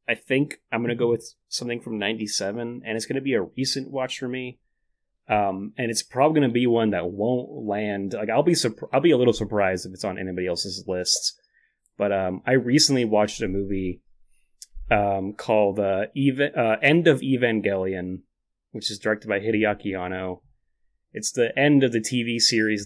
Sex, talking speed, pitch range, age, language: male, 195 wpm, 105-130 Hz, 30-49, English